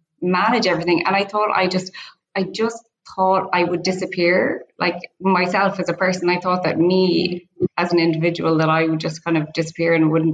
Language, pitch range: English, 160-180 Hz